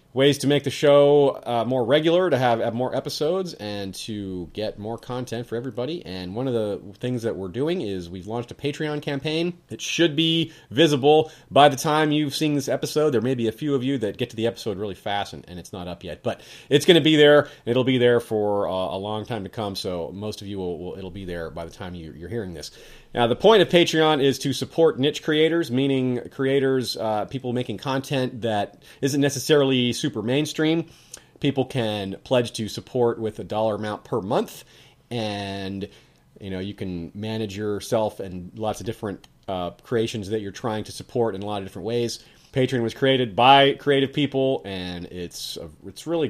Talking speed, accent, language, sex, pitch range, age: 210 wpm, American, English, male, 105-140 Hz, 30-49